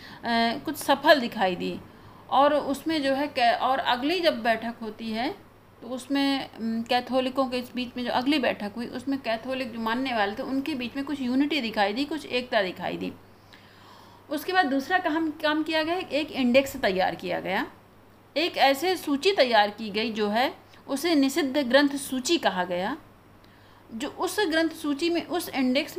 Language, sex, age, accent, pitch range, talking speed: Hindi, female, 50-69, native, 225-295 Hz, 175 wpm